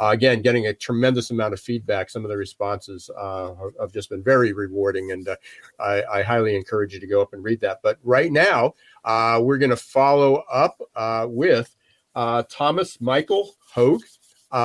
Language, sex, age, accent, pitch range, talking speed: English, male, 50-69, American, 110-135 Hz, 190 wpm